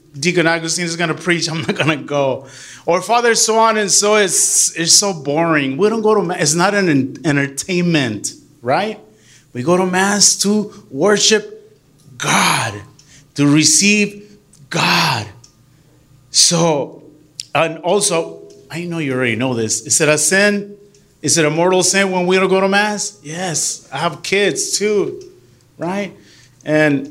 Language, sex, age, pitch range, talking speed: English, male, 30-49, 145-190 Hz, 155 wpm